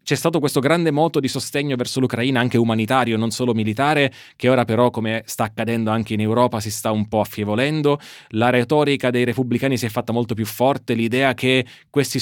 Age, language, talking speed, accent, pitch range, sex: 20-39, Italian, 200 wpm, native, 115-135 Hz, male